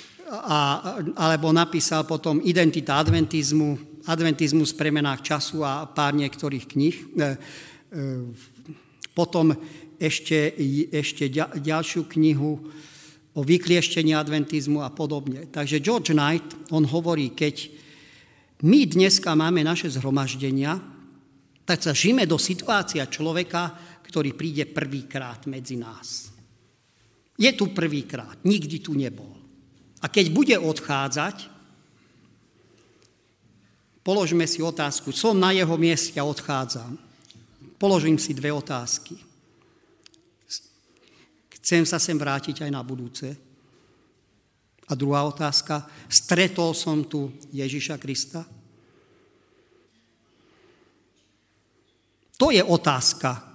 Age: 50-69